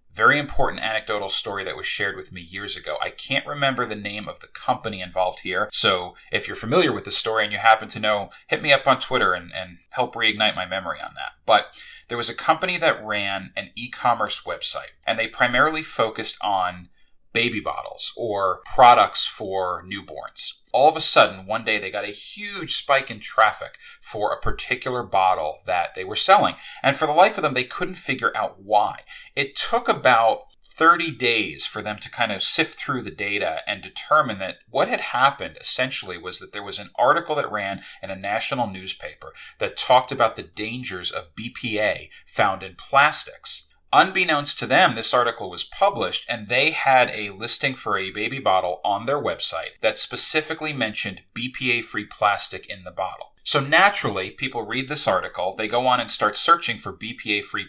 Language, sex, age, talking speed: English, male, 30-49, 190 wpm